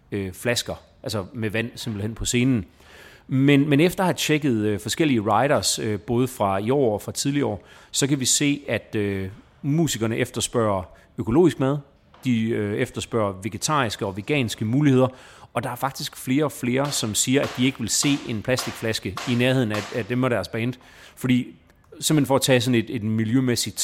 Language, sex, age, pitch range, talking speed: Danish, male, 30-49, 105-130 Hz, 175 wpm